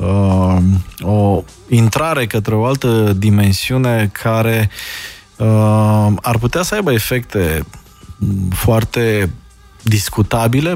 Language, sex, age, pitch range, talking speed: Romanian, male, 20-39, 100-115 Hz, 80 wpm